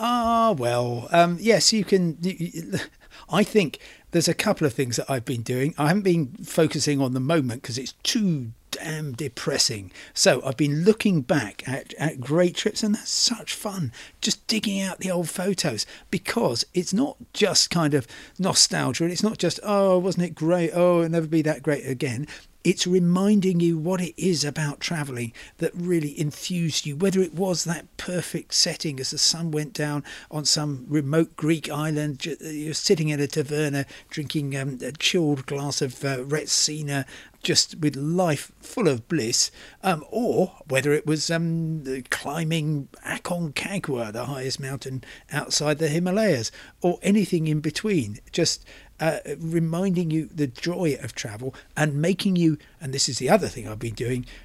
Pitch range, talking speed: 140-175 Hz, 170 wpm